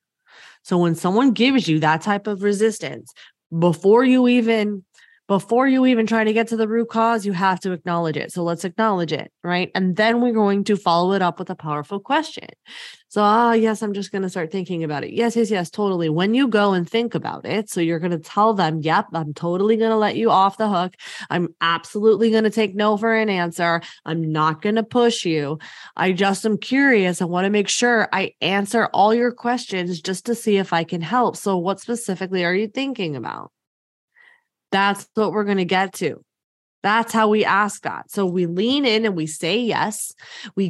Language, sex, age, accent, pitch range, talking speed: English, female, 20-39, American, 180-230 Hz, 215 wpm